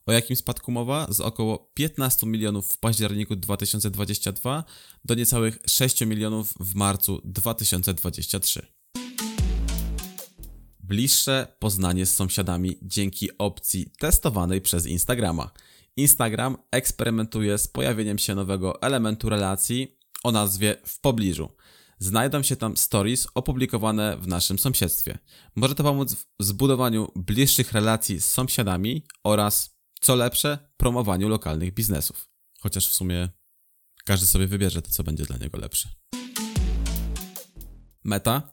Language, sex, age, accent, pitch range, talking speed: Polish, male, 20-39, native, 95-120 Hz, 115 wpm